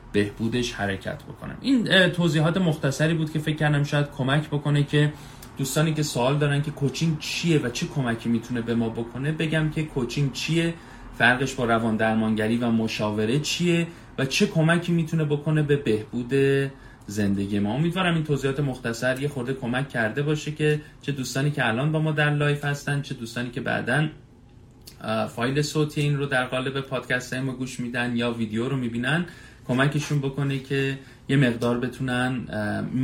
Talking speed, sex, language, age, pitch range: 165 wpm, male, Persian, 30-49, 120-150 Hz